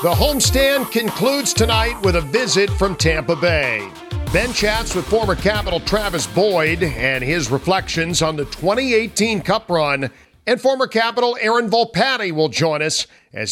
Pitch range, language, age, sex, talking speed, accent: 145-190 Hz, English, 50-69, male, 150 wpm, American